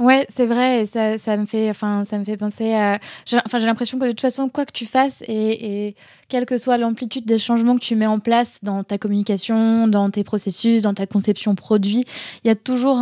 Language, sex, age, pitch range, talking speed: French, female, 20-39, 200-225 Hz, 245 wpm